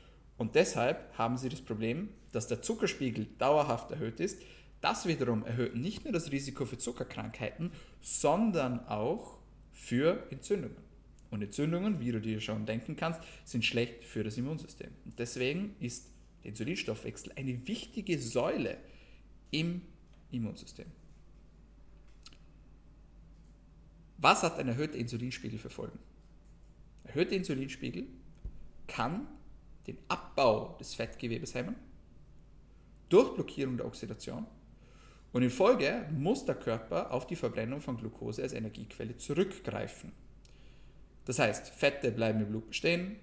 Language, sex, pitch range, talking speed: German, male, 115-155 Hz, 125 wpm